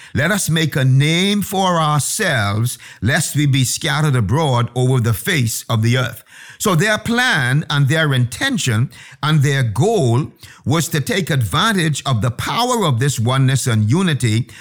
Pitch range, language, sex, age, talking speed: 125-165 Hz, English, male, 50-69, 160 wpm